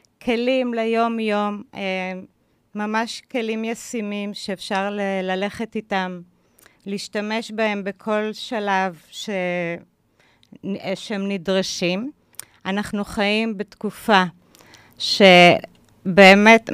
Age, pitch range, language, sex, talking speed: 30-49, 180-220 Hz, Hebrew, female, 70 wpm